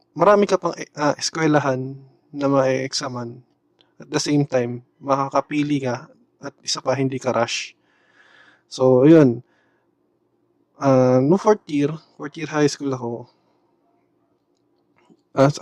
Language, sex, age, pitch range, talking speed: Filipino, male, 20-39, 130-155 Hz, 120 wpm